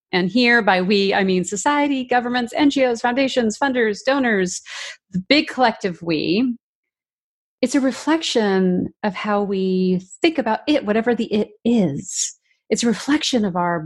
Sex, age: female, 30-49